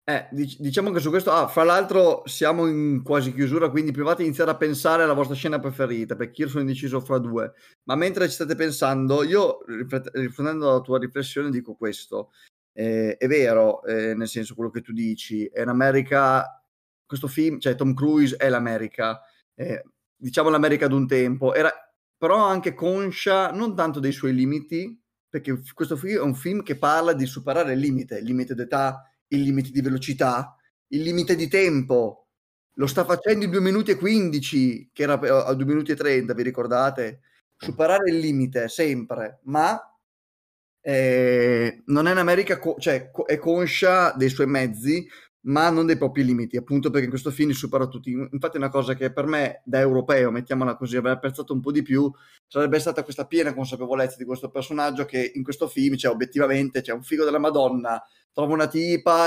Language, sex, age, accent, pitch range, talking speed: Italian, male, 20-39, native, 130-165 Hz, 185 wpm